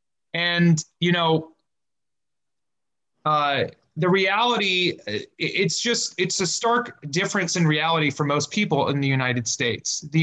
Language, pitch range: English, 145-180 Hz